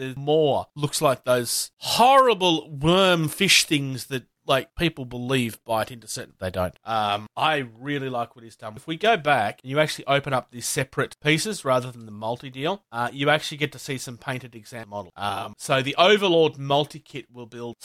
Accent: Australian